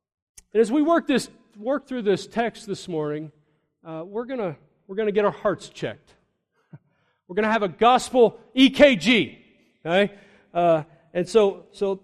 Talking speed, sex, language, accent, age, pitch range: 160 wpm, male, English, American, 40-59, 150-225 Hz